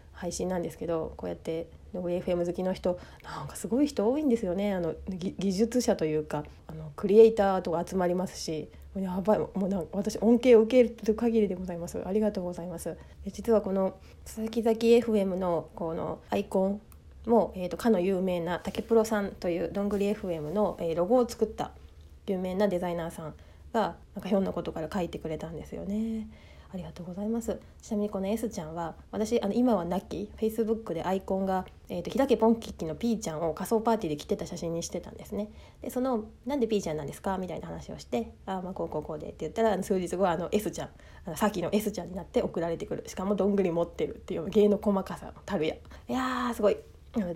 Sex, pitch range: female, 170-220 Hz